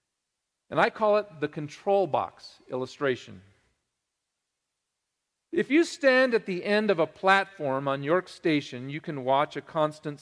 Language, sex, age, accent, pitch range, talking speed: English, male, 40-59, American, 125-165 Hz, 145 wpm